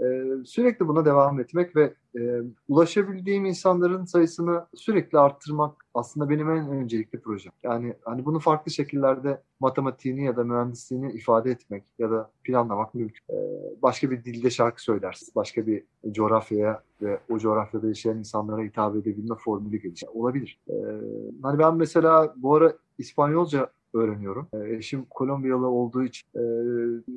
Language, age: Turkish, 30-49